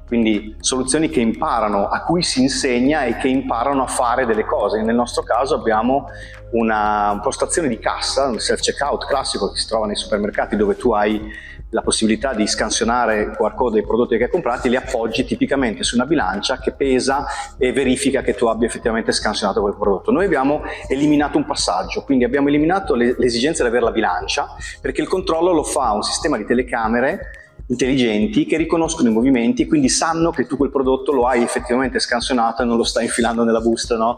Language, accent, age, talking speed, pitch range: Italian, native, 30-49, 185 wpm, 115-145 Hz